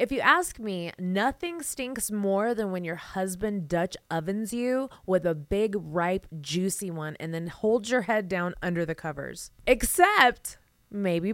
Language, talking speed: English, 165 wpm